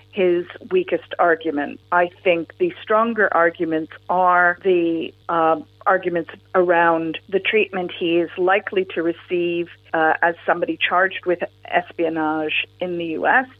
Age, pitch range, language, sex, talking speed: 50-69, 160-180 Hz, English, female, 130 wpm